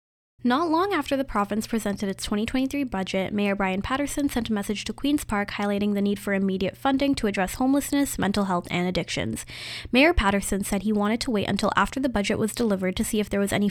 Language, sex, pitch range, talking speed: English, female, 195-235 Hz, 220 wpm